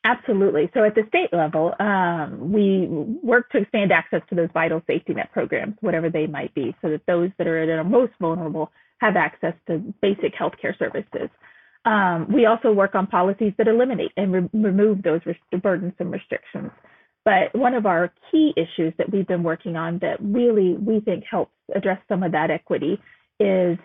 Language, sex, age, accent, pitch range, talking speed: English, female, 30-49, American, 175-215 Hz, 190 wpm